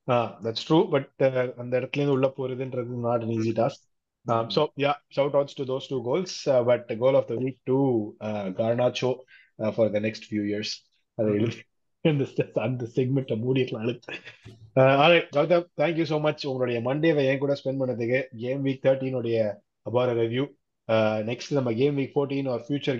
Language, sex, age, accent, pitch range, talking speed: Tamil, male, 20-39, native, 115-135 Hz, 200 wpm